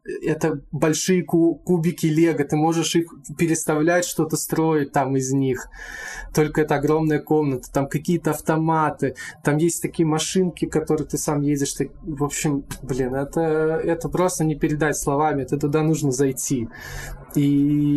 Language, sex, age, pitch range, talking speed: Russian, male, 20-39, 140-160 Hz, 145 wpm